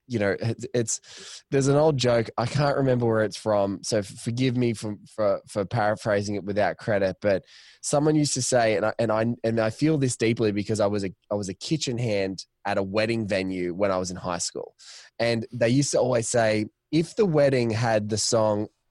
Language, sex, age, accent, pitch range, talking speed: English, male, 20-39, Australian, 110-155 Hz, 215 wpm